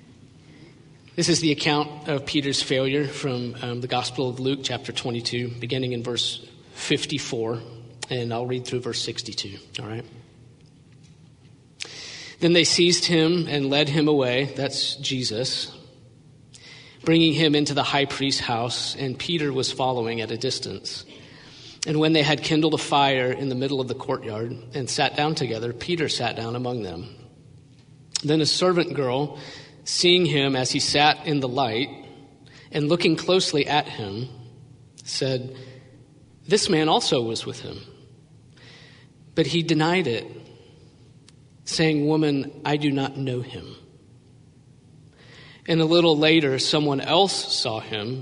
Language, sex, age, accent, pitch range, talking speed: English, male, 40-59, American, 125-150 Hz, 145 wpm